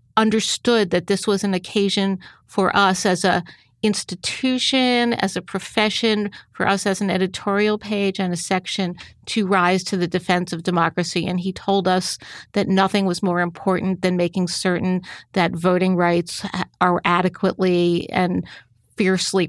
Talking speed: 150 wpm